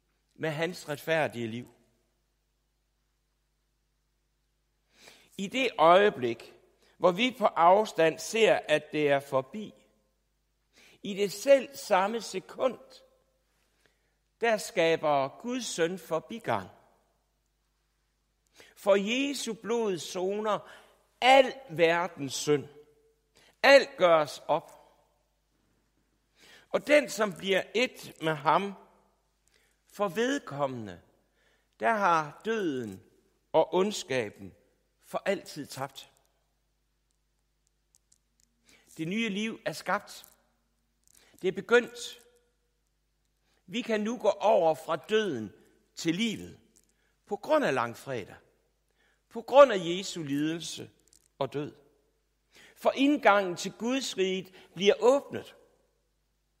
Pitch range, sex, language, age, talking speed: 150-225 Hz, male, Danish, 60-79, 95 wpm